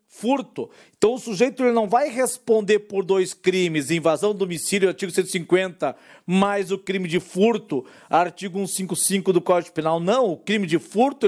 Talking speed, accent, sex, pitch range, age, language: 165 wpm, Brazilian, male, 180-225 Hz, 50-69, Portuguese